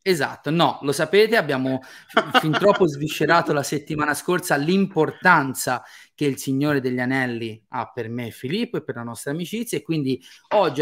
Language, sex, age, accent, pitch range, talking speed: Italian, male, 30-49, native, 125-160 Hz, 170 wpm